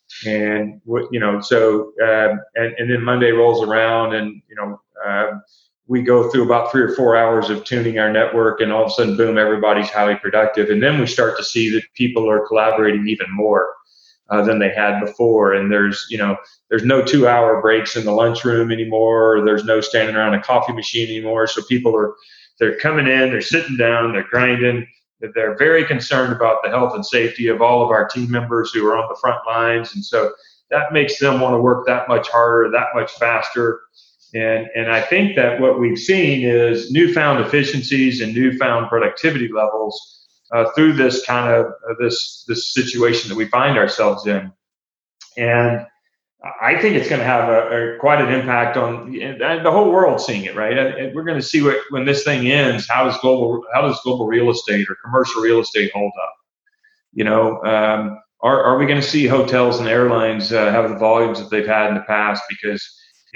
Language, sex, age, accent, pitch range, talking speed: English, male, 30-49, American, 110-130 Hz, 210 wpm